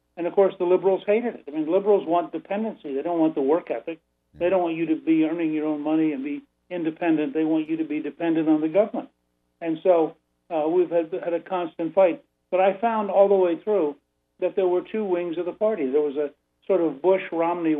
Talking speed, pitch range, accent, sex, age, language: 235 wpm, 155-175 Hz, American, male, 60-79, English